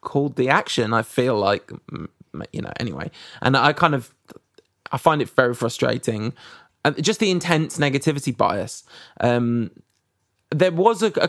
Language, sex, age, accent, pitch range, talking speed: English, male, 20-39, British, 125-155 Hz, 155 wpm